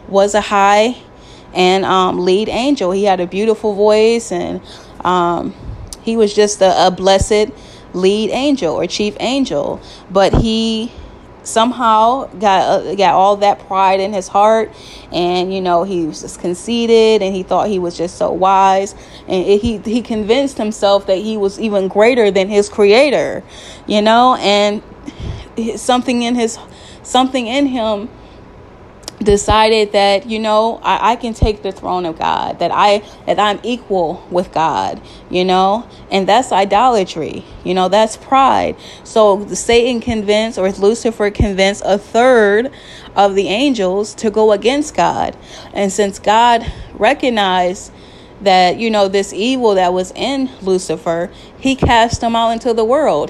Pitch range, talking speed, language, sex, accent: 190-225 Hz, 155 wpm, English, female, American